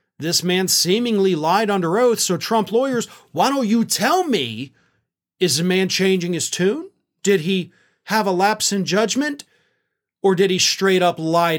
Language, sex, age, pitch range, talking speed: English, male, 40-59, 135-190 Hz, 170 wpm